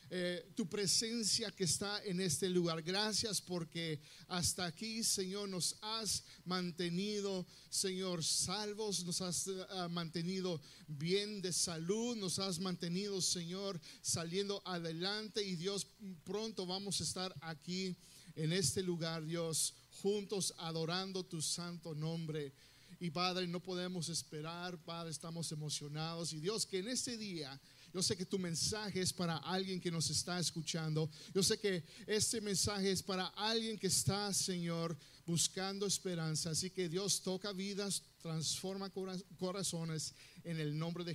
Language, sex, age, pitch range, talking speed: Spanish, male, 50-69, 160-195 Hz, 140 wpm